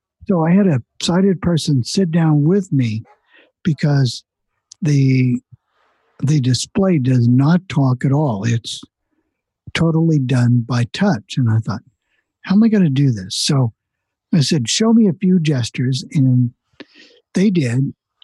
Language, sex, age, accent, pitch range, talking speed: English, male, 60-79, American, 125-175 Hz, 150 wpm